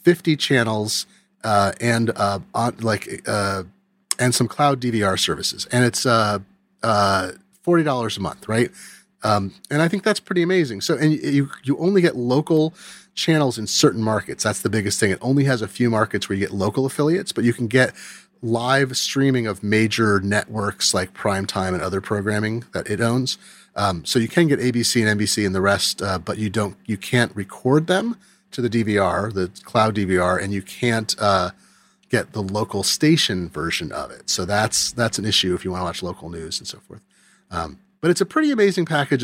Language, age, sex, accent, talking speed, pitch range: English, 30-49, male, American, 195 wpm, 100-135 Hz